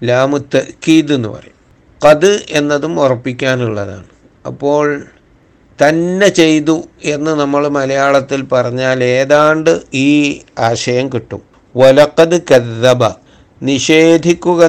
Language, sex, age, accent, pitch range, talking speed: Malayalam, male, 60-79, native, 120-145 Hz, 55 wpm